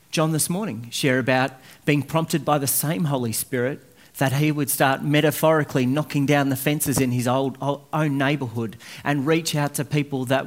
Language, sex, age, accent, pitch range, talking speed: English, male, 40-59, Australian, 120-155 Hz, 190 wpm